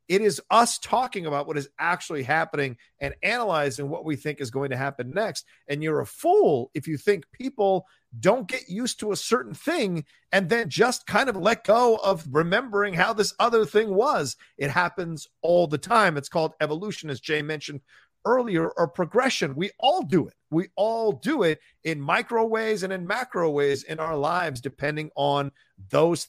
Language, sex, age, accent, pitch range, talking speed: English, male, 40-59, American, 155-220 Hz, 190 wpm